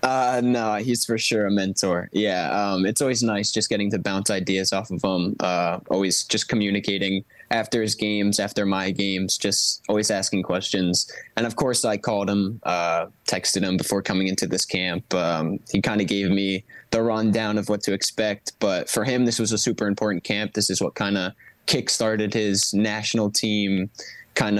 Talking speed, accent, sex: 195 wpm, American, male